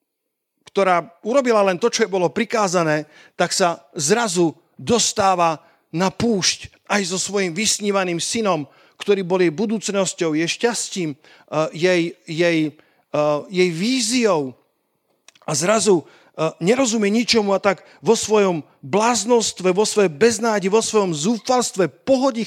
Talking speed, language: 120 wpm, Slovak